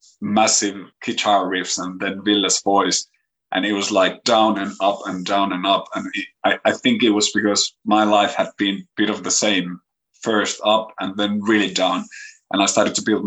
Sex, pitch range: male, 100-115 Hz